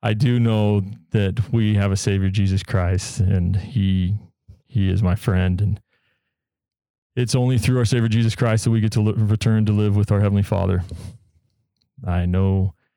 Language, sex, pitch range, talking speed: English, male, 100-115 Hz, 170 wpm